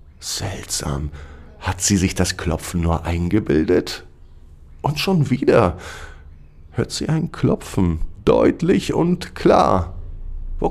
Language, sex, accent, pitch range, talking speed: German, male, German, 75-105 Hz, 105 wpm